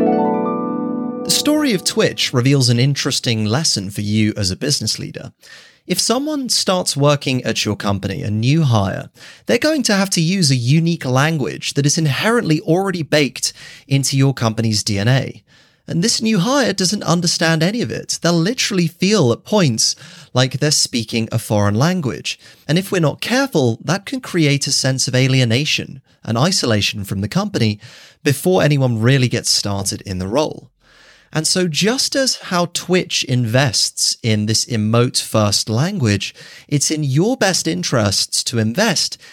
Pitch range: 115-170 Hz